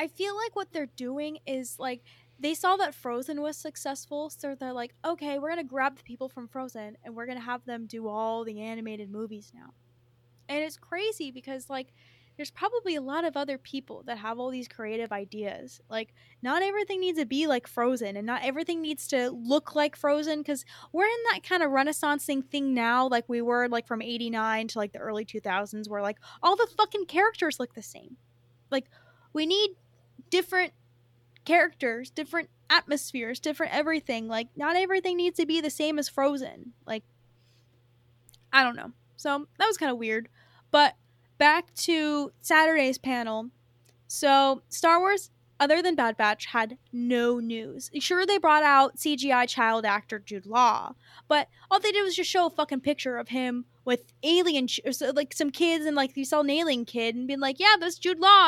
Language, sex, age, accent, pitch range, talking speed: English, female, 10-29, American, 225-310 Hz, 190 wpm